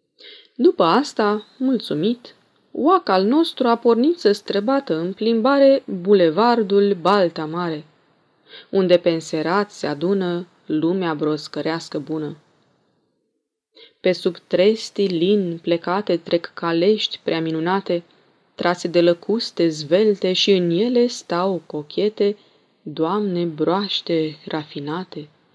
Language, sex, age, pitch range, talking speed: Romanian, female, 20-39, 165-220 Hz, 100 wpm